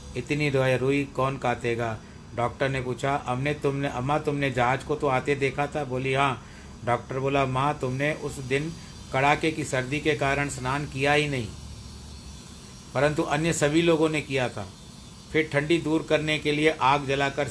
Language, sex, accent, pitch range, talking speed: Hindi, male, native, 115-150 Hz, 175 wpm